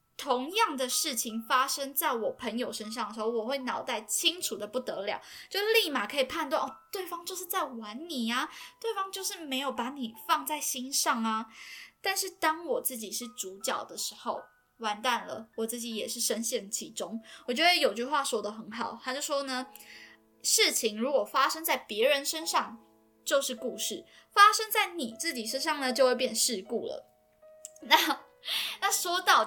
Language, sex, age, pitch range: Chinese, female, 10-29, 225-320 Hz